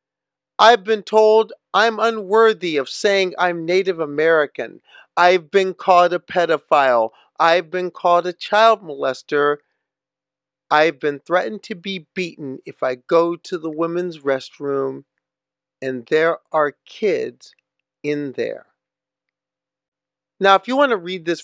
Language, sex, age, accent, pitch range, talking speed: English, male, 40-59, American, 135-195 Hz, 130 wpm